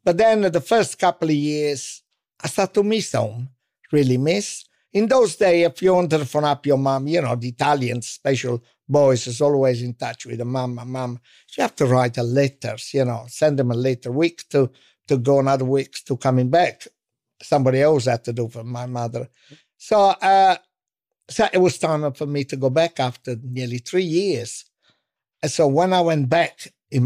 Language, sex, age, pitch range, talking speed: German, male, 60-79, 130-165 Hz, 205 wpm